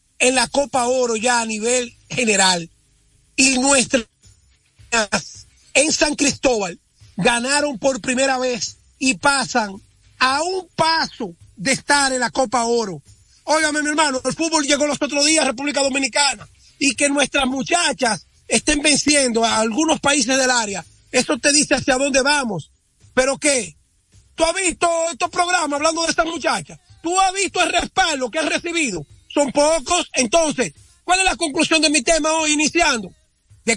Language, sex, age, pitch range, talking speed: Spanish, male, 40-59, 260-320 Hz, 160 wpm